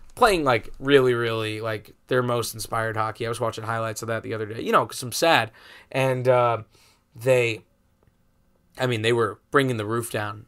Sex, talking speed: male, 190 wpm